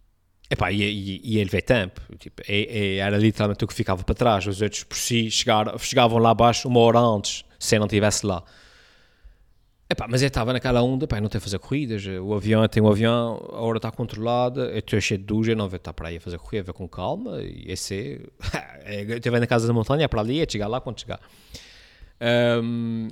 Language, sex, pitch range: Portuguese, male, 100-120 Hz